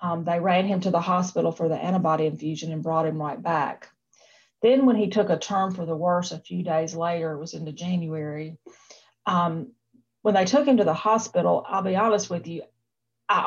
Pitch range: 160-195 Hz